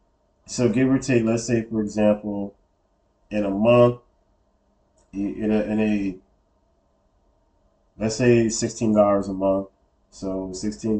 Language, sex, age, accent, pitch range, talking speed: English, male, 30-49, American, 100-120 Hz, 120 wpm